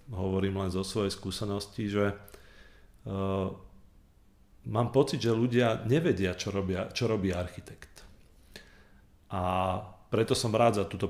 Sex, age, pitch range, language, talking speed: male, 40-59, 95-110 Hz, Slovak, 125 wpm